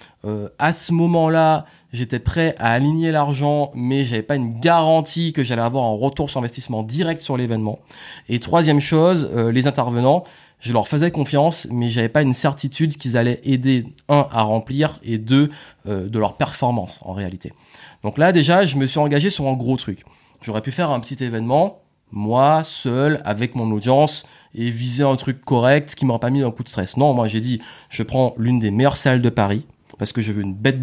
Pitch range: 115-150 Hz